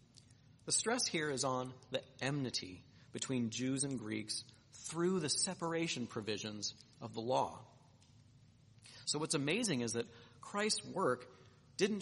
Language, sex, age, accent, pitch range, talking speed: English, male, 40-59, American, 120-150 Hz, 130 wpm